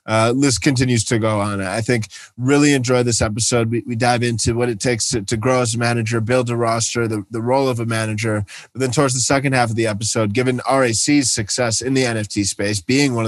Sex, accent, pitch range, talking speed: male, American, 110-130 Hz, 235 wpm